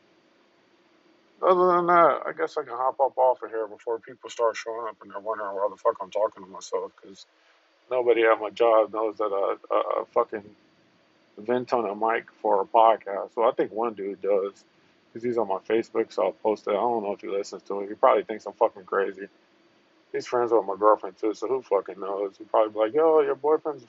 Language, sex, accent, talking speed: English, male, American, 230 wpm